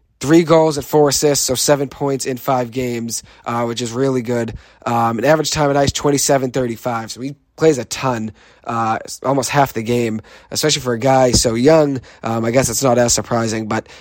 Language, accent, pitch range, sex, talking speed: English, American, 115-140 Hz, male, 200 wpm